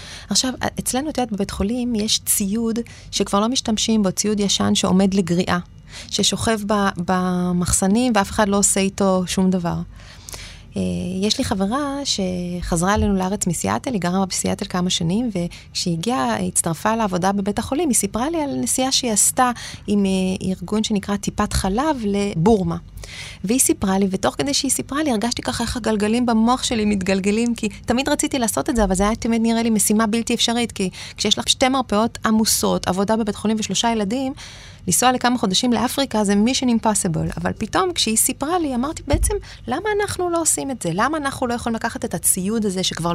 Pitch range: 190-245 Hz